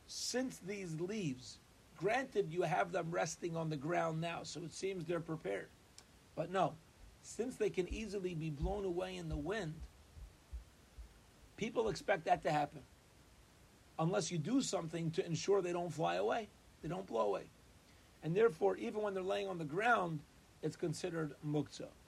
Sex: male